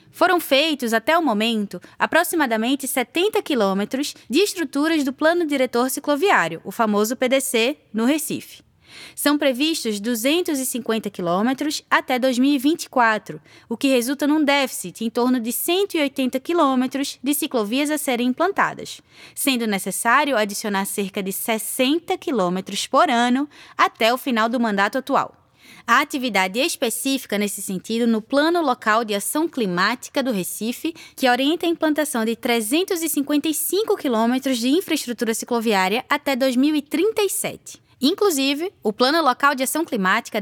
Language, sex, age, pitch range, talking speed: Portuguese, female, 20-39, 215-295 Hz, 130 wpm